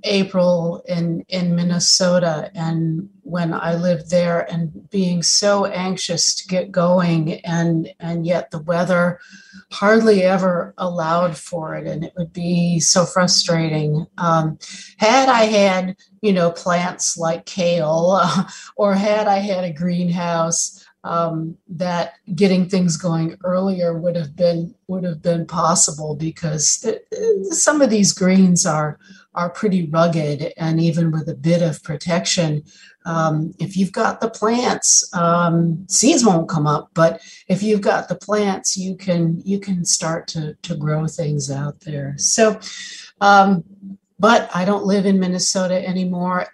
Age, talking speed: 50-69, 145 wpm